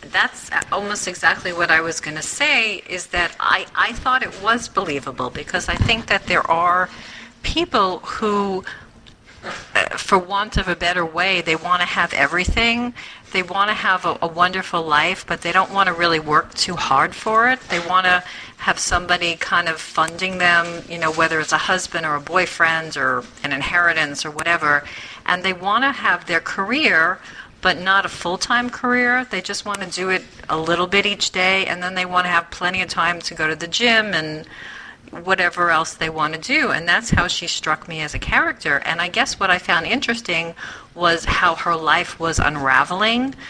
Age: 50-69